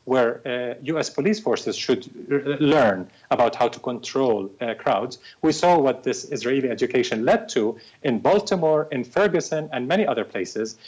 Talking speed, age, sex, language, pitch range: 160 wpm, 40-59, male, English, 125-170 Hz